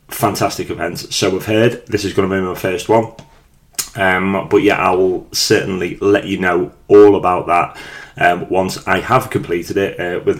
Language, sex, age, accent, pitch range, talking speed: English, male, 30-49, British, 95-115 Hz, 190 wpm